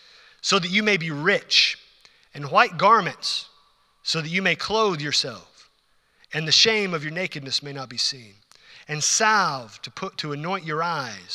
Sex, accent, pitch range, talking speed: male, American, 140-185 Hz, 175 wpm